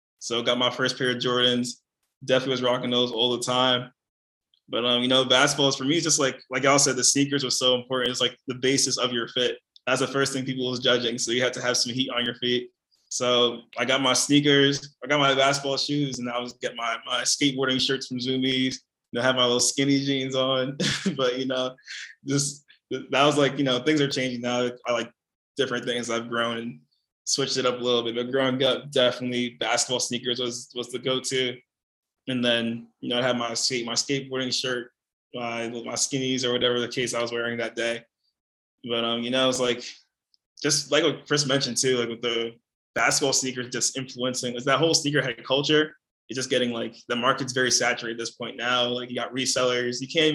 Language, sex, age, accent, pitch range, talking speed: English, male, 20-39, American, 120-130 Hz, 220 wpm